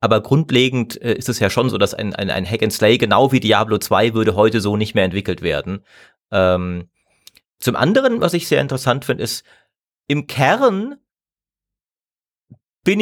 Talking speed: 170 wpm